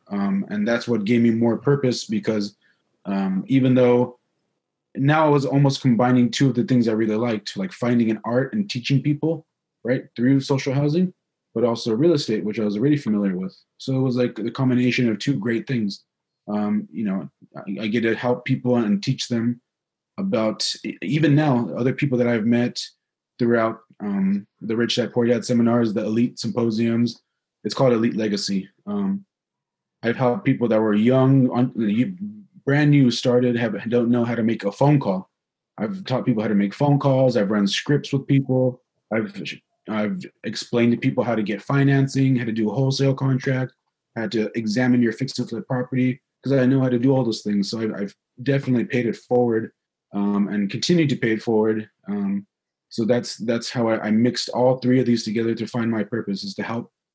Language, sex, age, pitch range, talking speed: English, male, 20-39, 115-135 Hz, 195 wpm